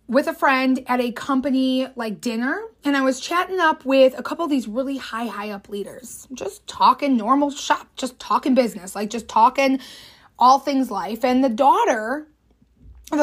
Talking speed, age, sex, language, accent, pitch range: 180 wpm, 20-39, female, English, American, 220-295 Hz